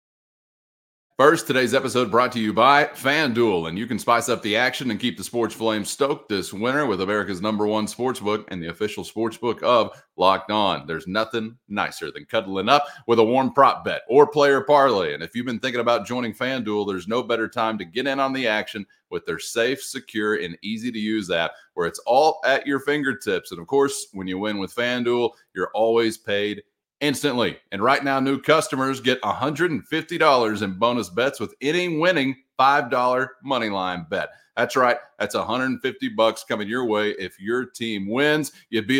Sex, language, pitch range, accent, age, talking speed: male, English, 105-135 Hz, American, 30-49, 195 wpm